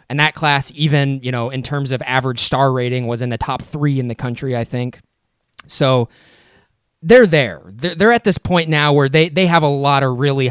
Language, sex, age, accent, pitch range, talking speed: English, male, 20-39, American, 125-150 Hz, 210 wpm